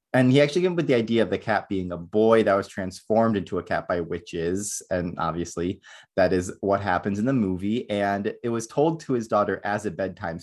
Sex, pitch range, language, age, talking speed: male, 95-125 Hz, English, 20-39, 235 wpm